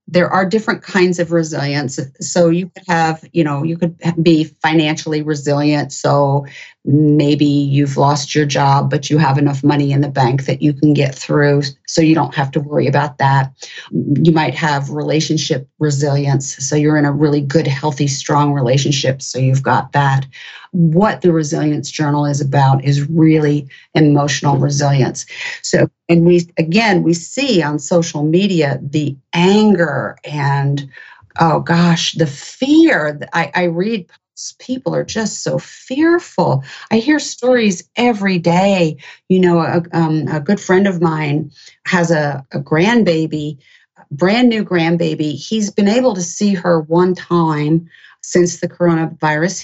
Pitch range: 145-180 Hz